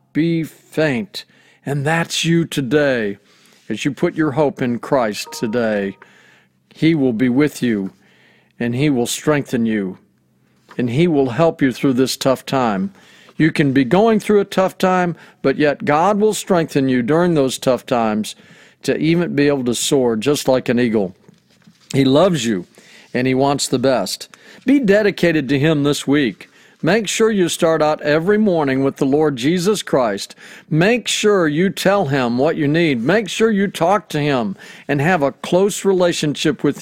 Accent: American